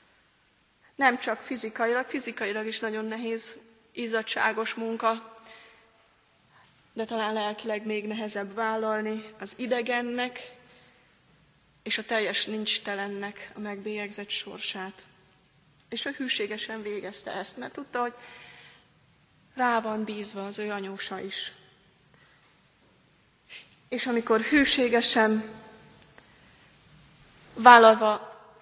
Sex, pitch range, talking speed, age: female, 205-240 Hz, 90 wpm, 30-49